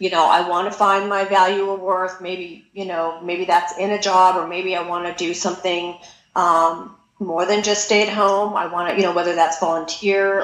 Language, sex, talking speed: English, female, 230 wpm